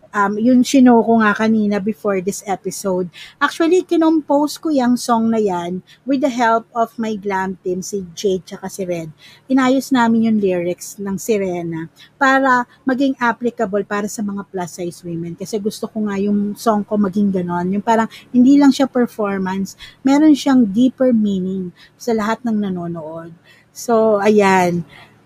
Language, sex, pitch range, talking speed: Filipino, female, 195-245 Hz, 155 wpm